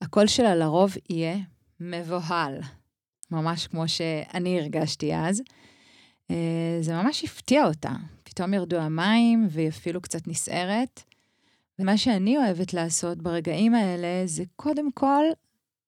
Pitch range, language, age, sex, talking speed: 165-215 Hz, Hebrew, 30-49, female, 115 wpm